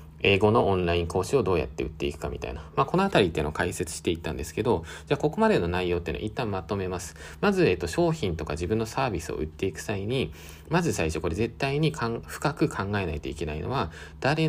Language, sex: Japanese, male